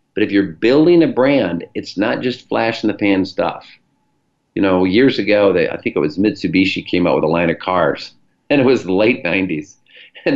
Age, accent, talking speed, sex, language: 50-69, American, 195 wpm, male, English